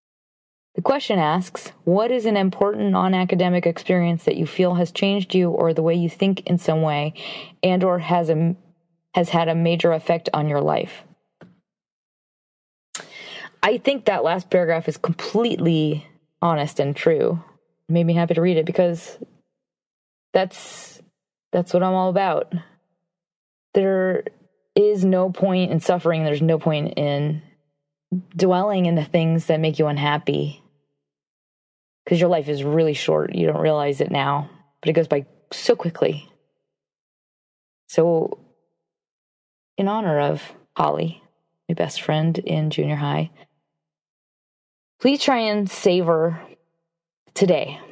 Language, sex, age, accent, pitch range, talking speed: English, female, 20-39, American, 150-185 Hz, 140 wpm